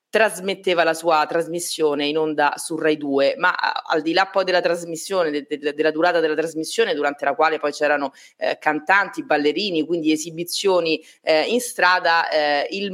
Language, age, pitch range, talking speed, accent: Italian, 30-49, 155-195 Hz, 160 wpm, native